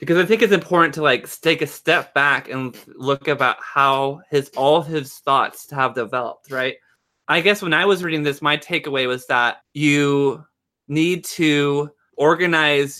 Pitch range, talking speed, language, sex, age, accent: 130-160 Hz, 170 wpm, English, male, 20-39, American